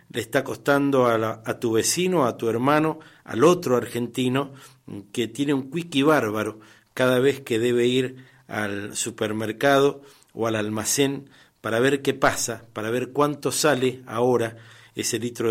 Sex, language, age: male, Spanish, 50-69